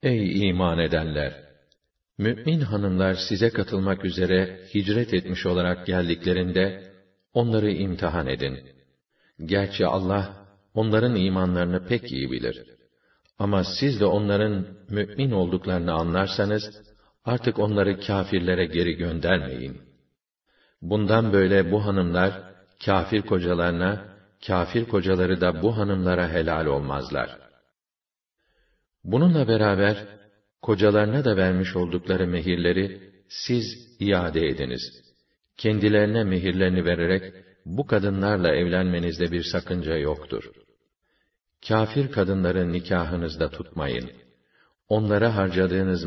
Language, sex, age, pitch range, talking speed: Arabic, male, 50-69, 90-105 Hz, 95 wpm